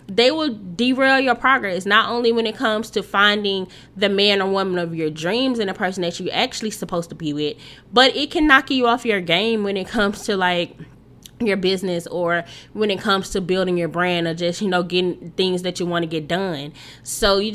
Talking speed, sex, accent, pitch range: 225 wpm, female, American, 180-240 Hz